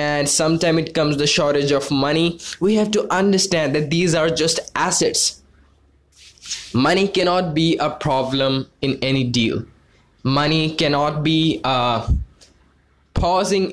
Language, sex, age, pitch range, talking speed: English, male, 20-39, 125-165 Hz, 130 wpm